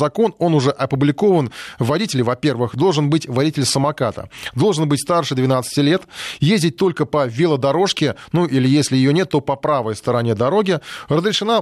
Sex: male